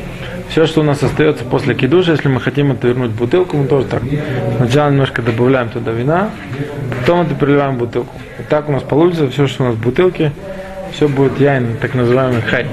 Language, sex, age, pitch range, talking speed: Russian, male, 20-39, 125-150 Hz, 210 wpm